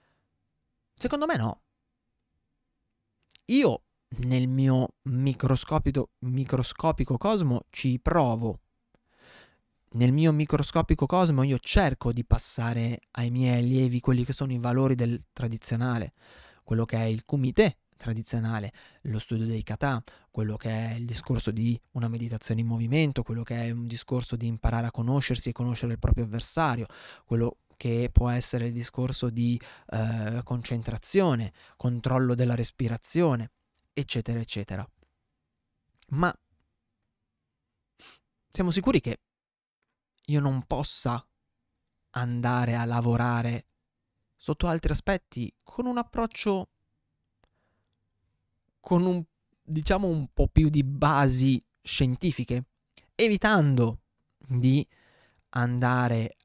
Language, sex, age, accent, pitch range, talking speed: Italian, male, 20-39, native, 115-140 Hz, 110 wpm